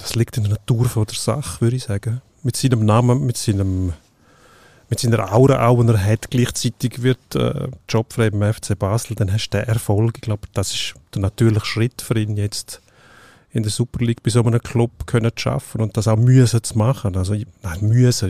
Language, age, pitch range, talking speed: German, 40-59, 105-125 Hz, 215 wpm